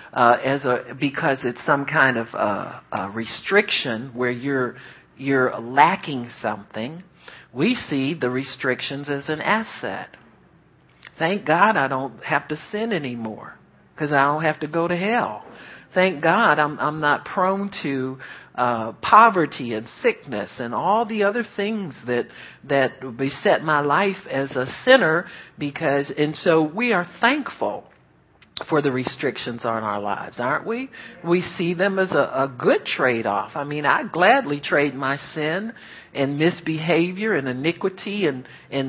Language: English